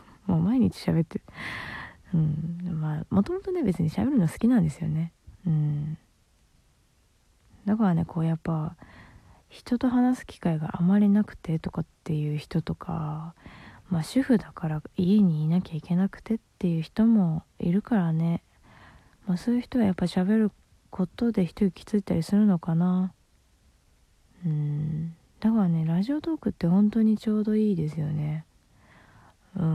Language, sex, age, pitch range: Japanese, female, 20-39, 160-215 Hz